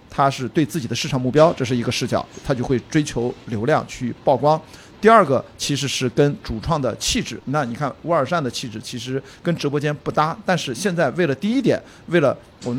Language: Chinese